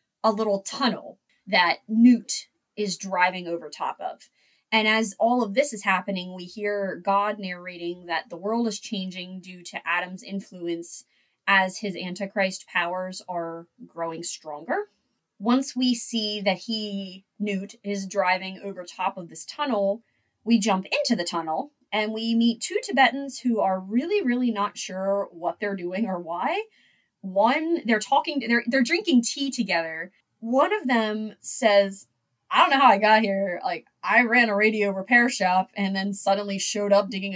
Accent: American